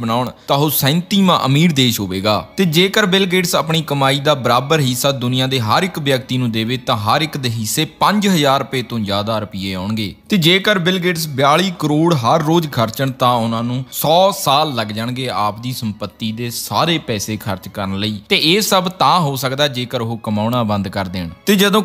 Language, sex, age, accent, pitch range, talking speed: Hindi, male, 20-39, native, 110-165 Hz, 95 wpm